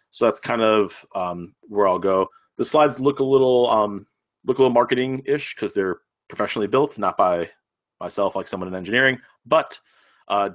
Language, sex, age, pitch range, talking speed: English, male, 30-49, 100-135 Hz, 175 wpm